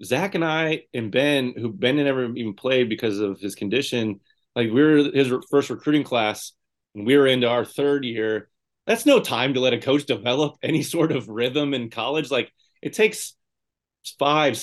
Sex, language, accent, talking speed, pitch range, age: male, English, American, 195 wpm, 110-140 Hz, 30-49